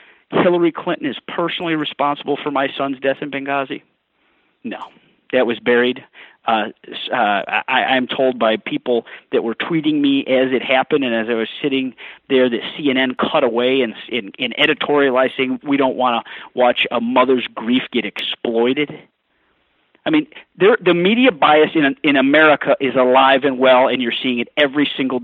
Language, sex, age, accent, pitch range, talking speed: English, male, 40-59, American, 125-160 Hz, 175 wpm